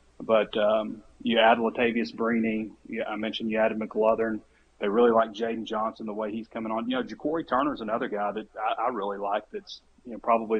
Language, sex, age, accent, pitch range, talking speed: English, male, 30-49, American, 105-115 Hz, 210 wpm